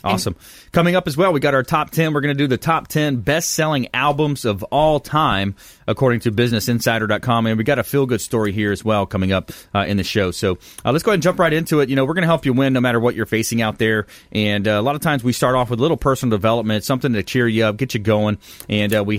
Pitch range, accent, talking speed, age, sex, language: 100-125 Hz, American, 290 wpm, 30-49, male, English